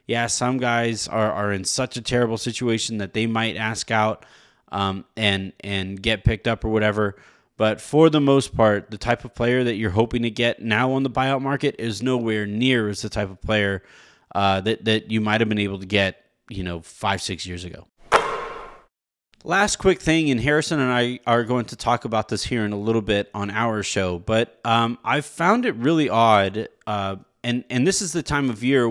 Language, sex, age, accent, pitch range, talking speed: English, male, 30-49, American, 100-125 Hz, 215 wpm